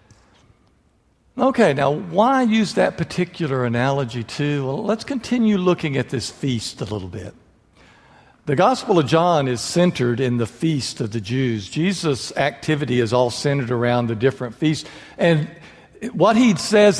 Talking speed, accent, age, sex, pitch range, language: 150 wpm, American, 60-79, male, 150-225 Hz, English